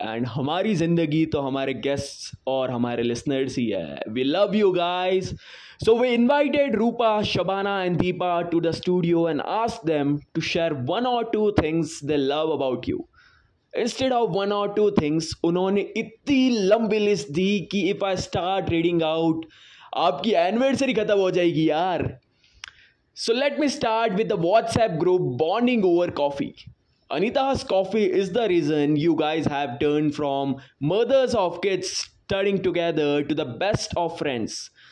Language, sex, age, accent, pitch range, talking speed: Hindi, male, 20-39, native, 150-205 Hz, 100 wpm